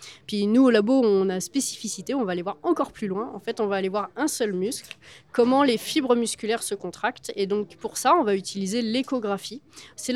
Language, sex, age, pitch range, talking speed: French, female, 20-39, 190-235 Hz, 225 wpm